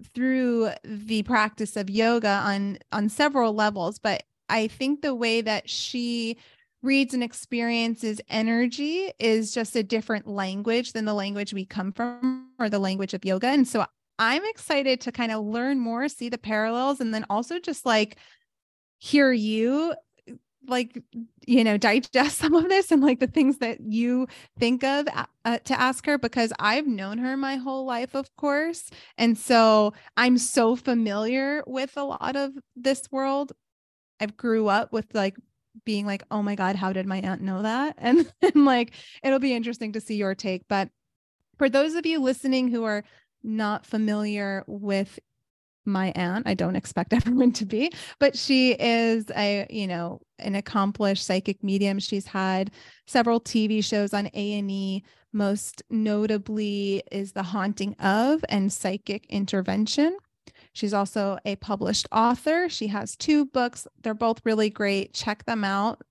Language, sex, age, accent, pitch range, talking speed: English, female, 20-39, American, 205-260 Hz, 165 wpm